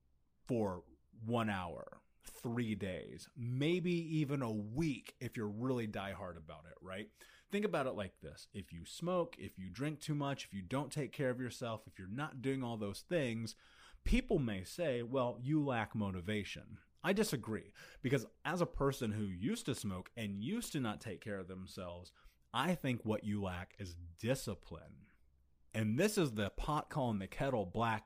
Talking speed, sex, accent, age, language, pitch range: 180 wpm, male, American, 30-49, English, 100-145 Hz